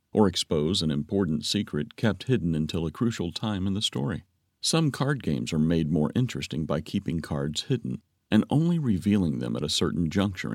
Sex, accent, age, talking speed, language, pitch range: male, American, 50-69, 190 wpm, English, 80-105 Hz